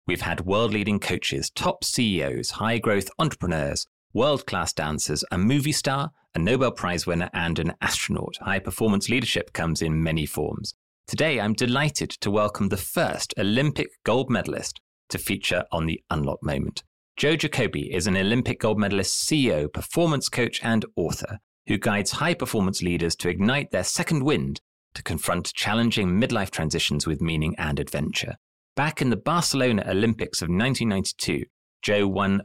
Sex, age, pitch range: male, 30-49, 85-120 Hz